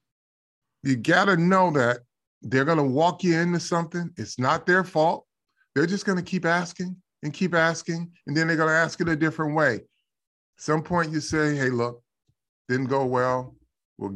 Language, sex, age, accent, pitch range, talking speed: English, male, 30-49, American, 130-175 Hz, 190 wpm